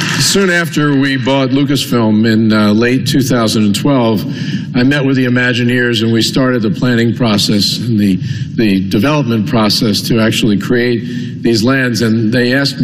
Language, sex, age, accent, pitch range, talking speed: English, male, 50-69, American, 115-140 Hz, 155 wpm